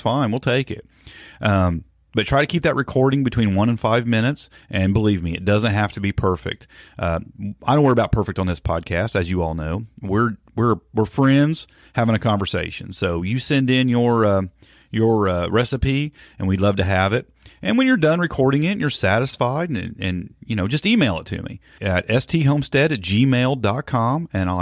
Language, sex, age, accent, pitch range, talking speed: English, male, 40-59, American, 95-125 Hz, 205 wpm